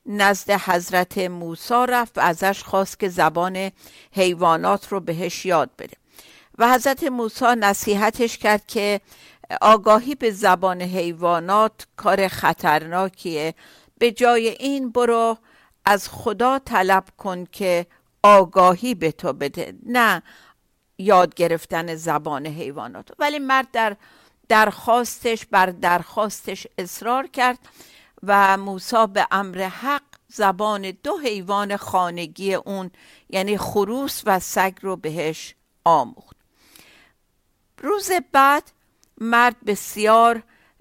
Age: 60-79